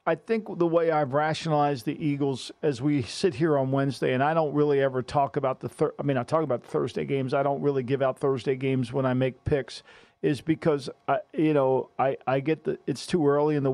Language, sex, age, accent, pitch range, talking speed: English, male, 50-69, American, 140-170 Hz, 245 wpm